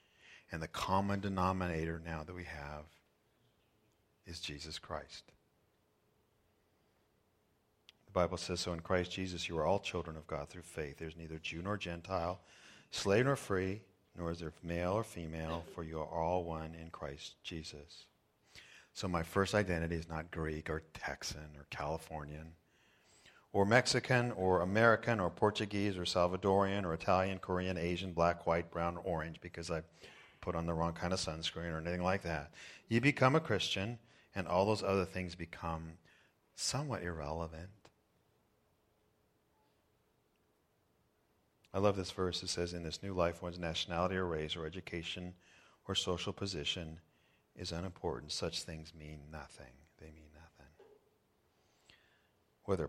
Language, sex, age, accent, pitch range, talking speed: English, male, 50-69, American, 80-95 Hz, 145 wpm